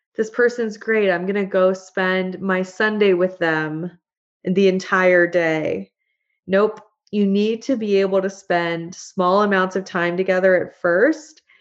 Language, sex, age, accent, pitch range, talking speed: English, female, 20-39, American, 175-210 Hz, 155 wpm